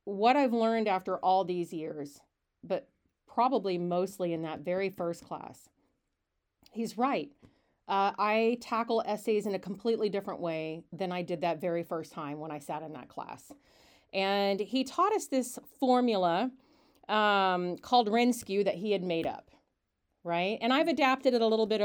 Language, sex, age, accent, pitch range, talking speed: English, female, 40-59, American, 175-220 Hz, 170 wpm